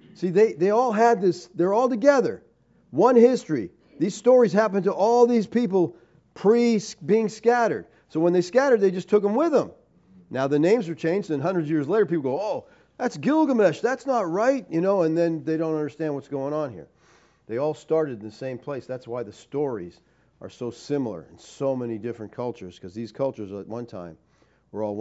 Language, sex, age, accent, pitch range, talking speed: English, male, 40-59, American, 120-180 Hz, 205 wpm